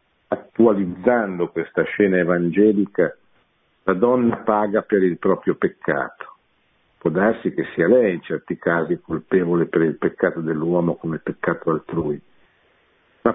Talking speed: 125 wpm